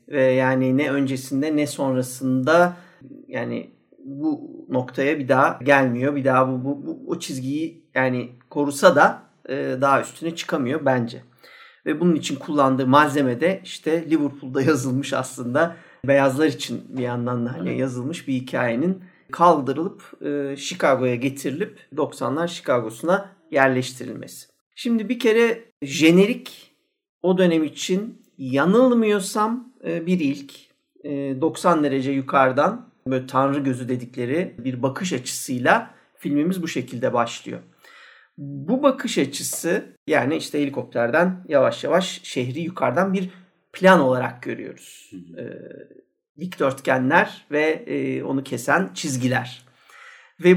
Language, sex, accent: Turkish, male, native